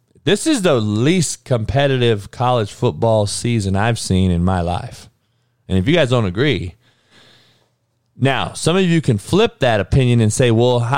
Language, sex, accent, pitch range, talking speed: English, male, American, 120-160 Hz, 165 wpm